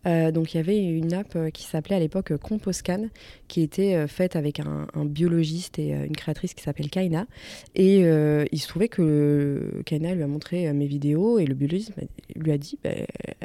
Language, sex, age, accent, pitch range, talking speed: French, female, 20-39, French, 155-190 Hz, 220 wpm